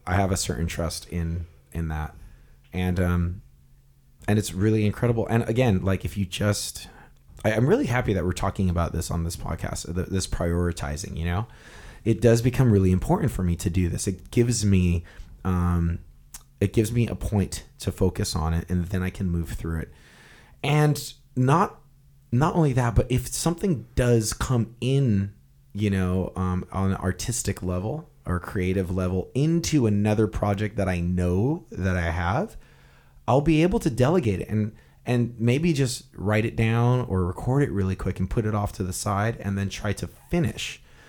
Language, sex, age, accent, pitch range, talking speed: English, male, 30-49, American, 90-125 Hz, 180 wpm